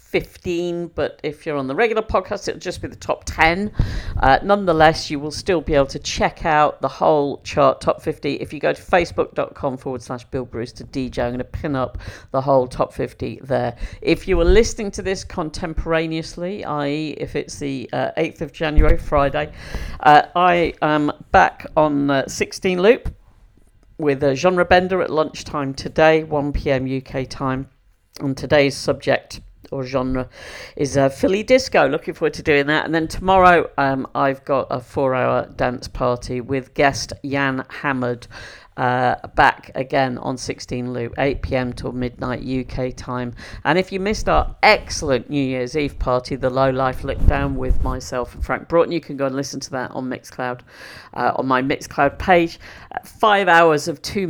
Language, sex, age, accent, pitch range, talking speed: English, female, 50-69, British, 125-155 Hz, 180 wpm